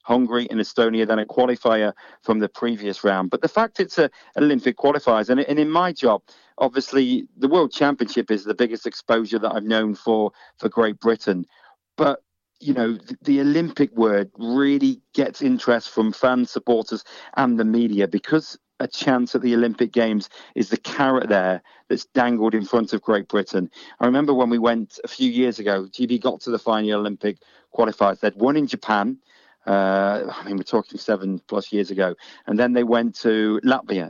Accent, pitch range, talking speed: British, 105-125 Hz, 185 wpm